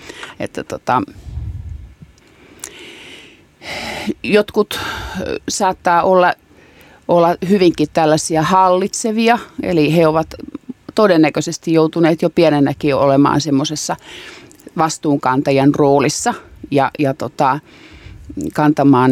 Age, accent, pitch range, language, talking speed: 30-49, native, 140-170 Hz, Finnish, 75 wpm